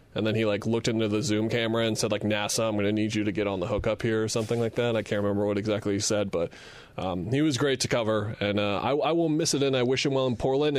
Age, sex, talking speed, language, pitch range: 20-39, male, 310 wpm, English, 110-130 Hz